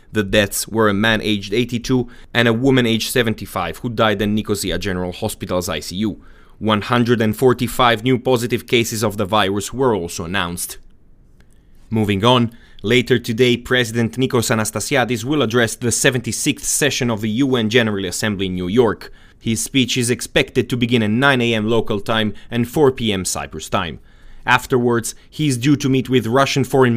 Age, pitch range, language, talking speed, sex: 30-49, 105-125 Hz, English, 165 wpm, male